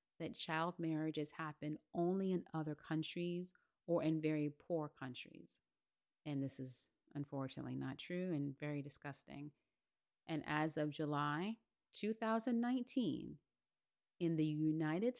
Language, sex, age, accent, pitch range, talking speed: English, female, 30-49, American, 150-190 Hz, 120 wpm